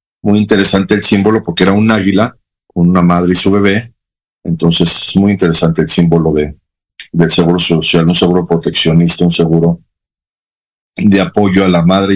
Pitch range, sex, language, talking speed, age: 85-100 Hz, male, Spanish, 170 wpm, 50-69